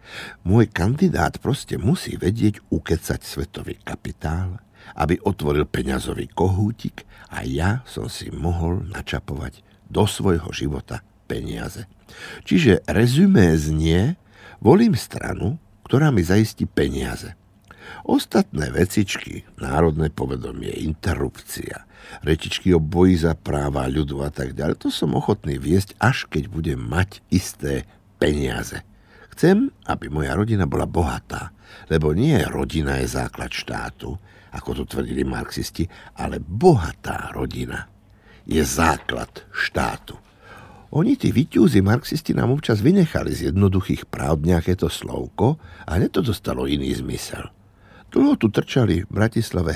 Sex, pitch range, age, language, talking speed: male, 75-105 Hz, 60-79, Slovak, 120 wpm